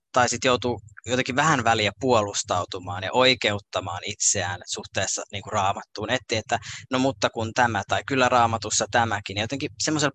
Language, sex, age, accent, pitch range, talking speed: Finnish, male, 20-39, native, 105-130 Hz, 160 wpm